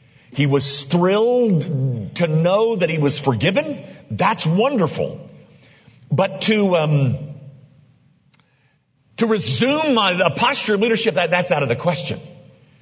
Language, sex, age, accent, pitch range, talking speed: English, male, 50-69, American, 140-205 Hz, 125 wpm